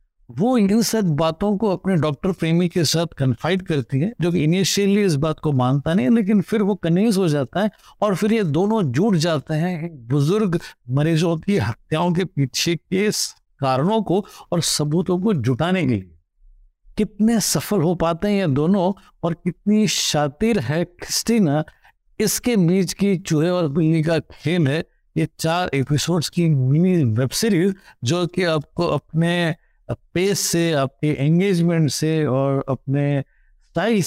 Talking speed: 155 wpm